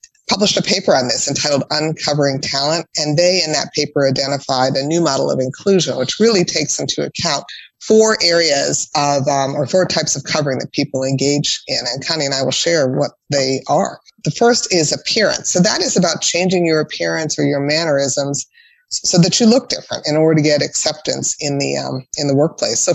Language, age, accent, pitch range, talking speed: English, 30-49, American, 140-165 Hz, 200 wpm